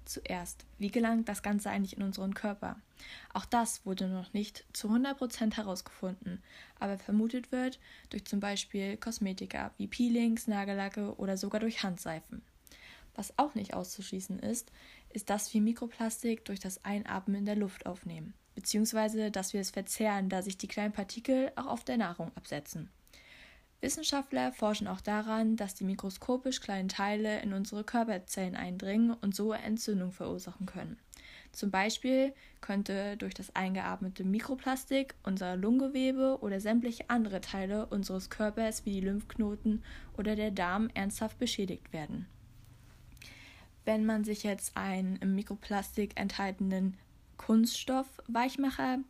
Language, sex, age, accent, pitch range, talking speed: German, female, 20-39, German, 195-225 Hz, 140 wpm